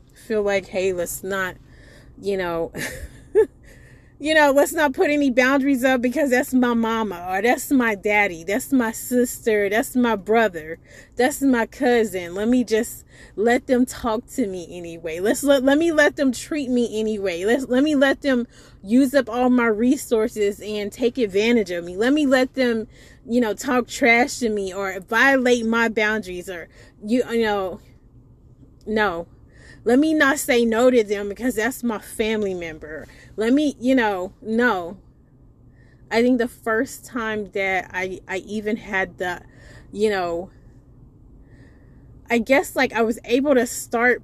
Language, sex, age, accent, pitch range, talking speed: English, female, 30-49, American, 200-255 Hz, 165 wpm